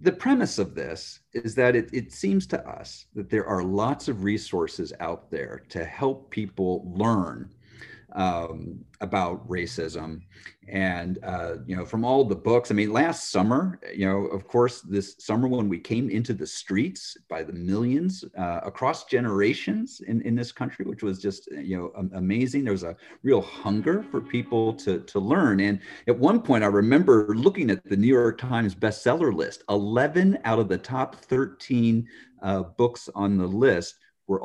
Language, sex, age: English, male, 40-59